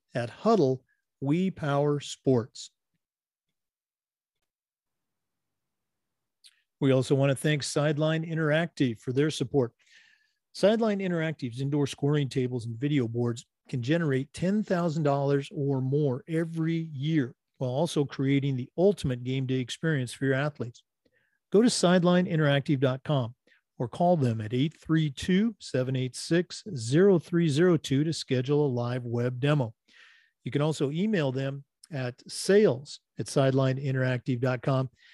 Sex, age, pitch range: male, 40-59, 130-165 Hz